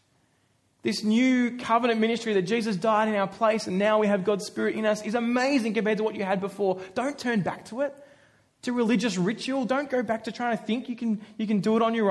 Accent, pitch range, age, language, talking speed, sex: Australian, 170-220 Hz, 20-39, English, 240 wpm, male